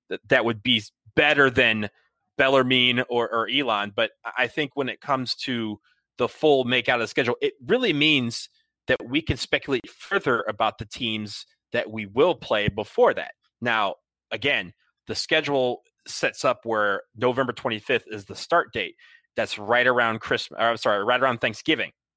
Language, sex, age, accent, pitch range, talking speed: English, male, 30-49, American, 115-140 Hz, 170 wpm